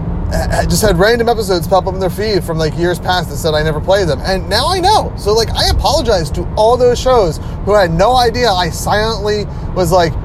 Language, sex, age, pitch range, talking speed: English, male, 30-49, 130-175 Hz, 235 wpm